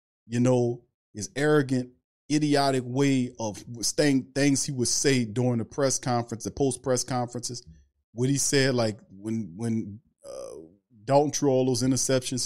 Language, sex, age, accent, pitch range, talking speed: English, male, 40-59, American, 110-135 Hz, 155 wpm